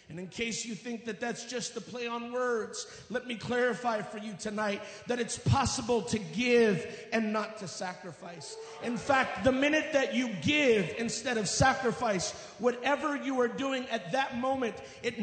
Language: English